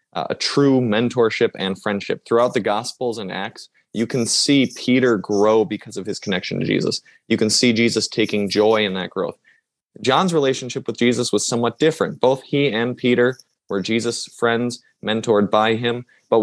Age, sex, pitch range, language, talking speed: 20-39, male, 105-125 Hz, English, 175 wpm